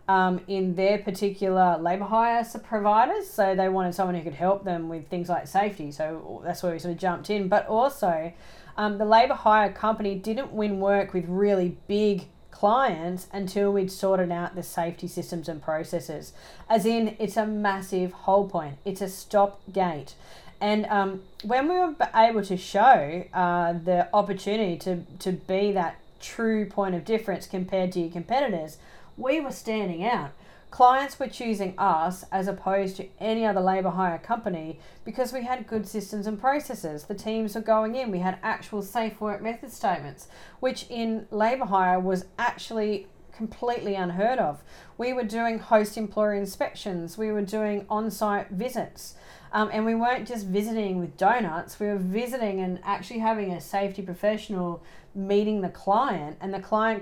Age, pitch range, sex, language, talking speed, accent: 30-49, 185-225 Hz, female, English, 170 wpm, Australian